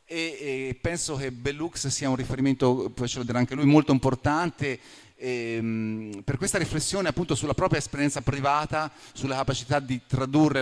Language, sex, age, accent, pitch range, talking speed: Italian, male, 30-49, native, 115-150 Hz, 155 wpm